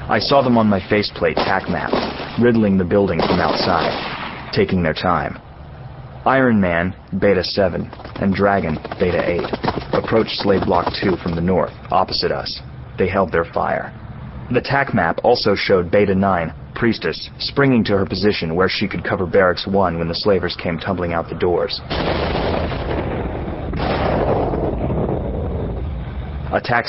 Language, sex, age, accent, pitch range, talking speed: English, male, 30-49, American, 90-110 Hz, 145 wpm